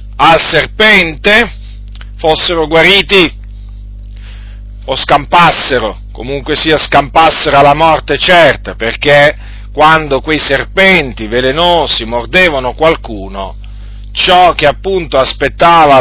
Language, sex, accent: Italian, male, native